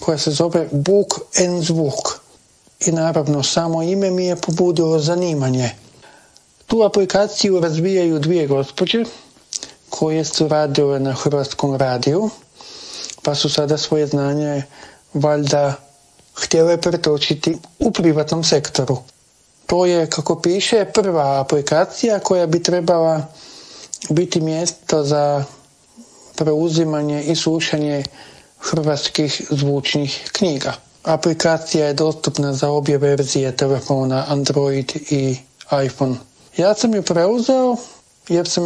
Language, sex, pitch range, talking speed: Croatian, male, 145-180 Hz, 110 wpm